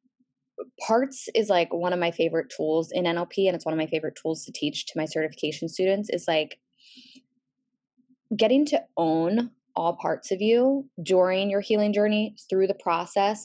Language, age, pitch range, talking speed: English, 10-29, 165-215 Hz, 175 wpm